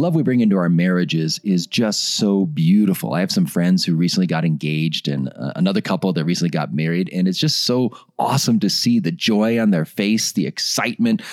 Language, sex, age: English, male, 30-49